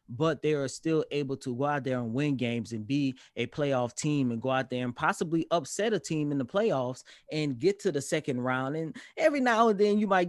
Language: English